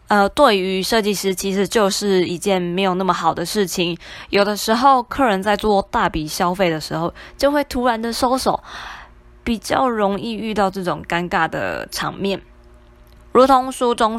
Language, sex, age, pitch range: Chinese, female, 20-39, 180-240 Hz